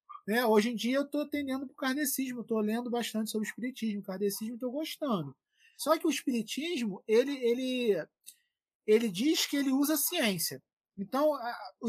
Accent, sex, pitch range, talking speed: Brazilian, male, 220-295 Hz, 175 wpm